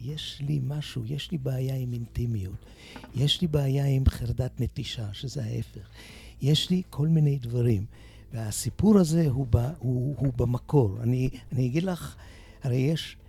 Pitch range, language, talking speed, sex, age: 120-155 Hz, Hebrew, 155 wpm, male, 60-79